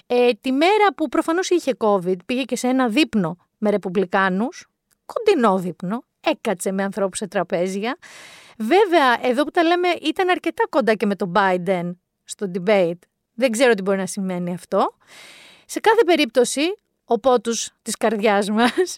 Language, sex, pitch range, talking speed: Greek, female, 205-290 Hz, 155 wpm